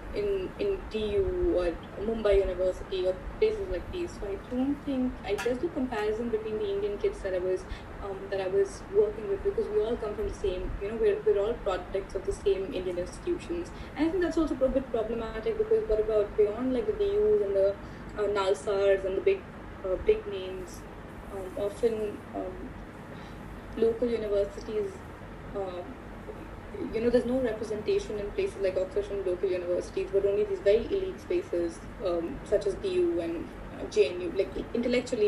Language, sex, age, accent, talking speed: English, female, 20-39, Indian, 180 wpm